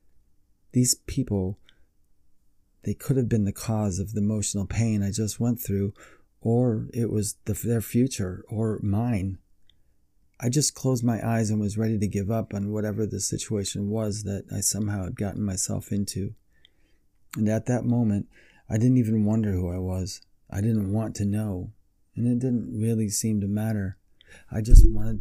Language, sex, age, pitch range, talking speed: English, male, 30-49, 95-110 Hz, 175 wpm